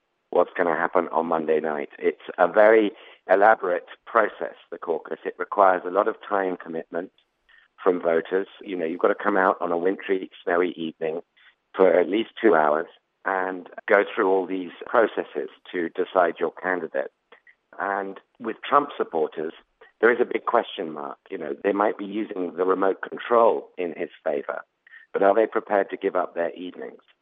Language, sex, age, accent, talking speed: English, male, 50-69, British, 180 wpm